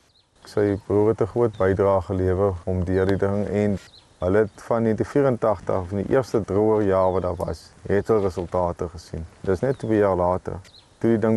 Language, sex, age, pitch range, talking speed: English, male, 20-39, 90-105 Hz, 190 wpm